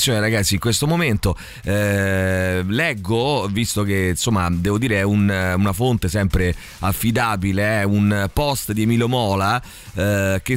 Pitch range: 100-130 Hz